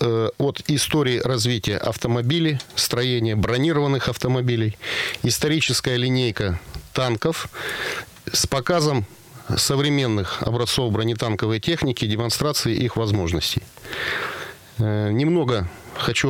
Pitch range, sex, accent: 110-135 Hz, male, native